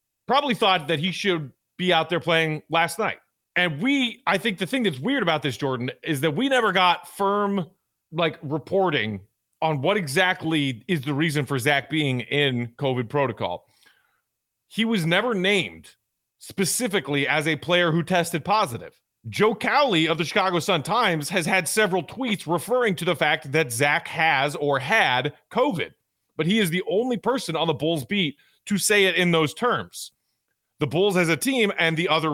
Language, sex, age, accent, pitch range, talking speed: English, male, 30-49, American, 150-190 Hz, 180 wpm